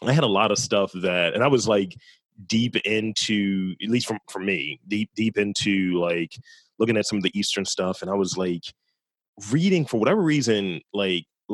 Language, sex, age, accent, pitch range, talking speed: English, male, 30-49, American, 100-135 Hz, 210 wpm